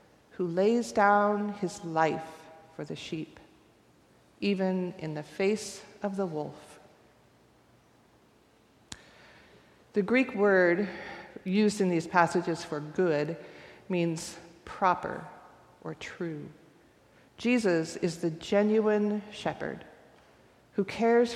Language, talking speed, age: English, 100 wpm, 40-59